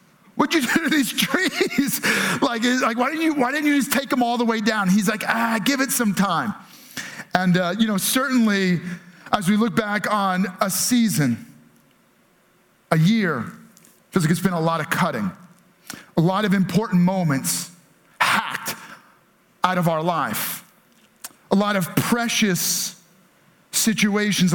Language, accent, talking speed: English, American, 160 wpm